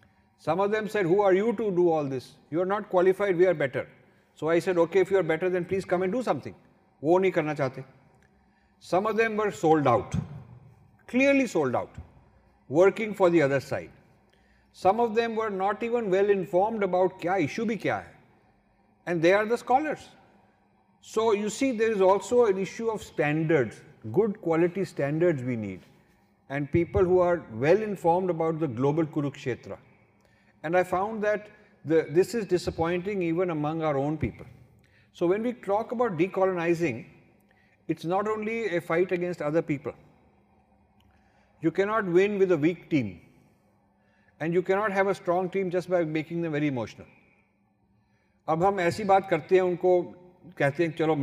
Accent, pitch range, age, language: Indian, 140-195 Hz, 50-69, English